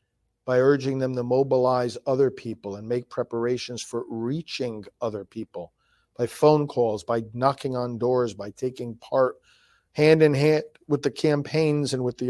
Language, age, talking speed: English, 50-69, 150 wpm